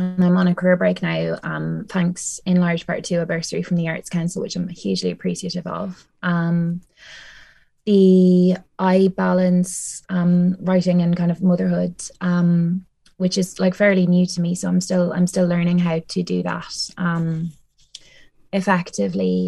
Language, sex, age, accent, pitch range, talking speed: English, female, 20-39, Irish, 165-185 Hz, 165 wpm